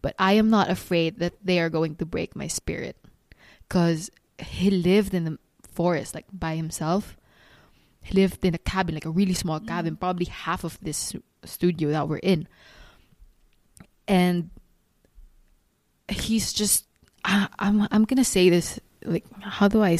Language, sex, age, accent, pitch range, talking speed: English, female, 20-39, Filipino, 165-200 Hz, 160 wpm